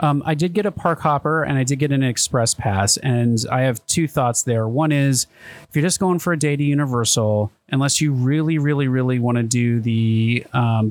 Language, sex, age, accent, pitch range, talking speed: English, male, 30-49, American, 115-140 Hz, 225 wpm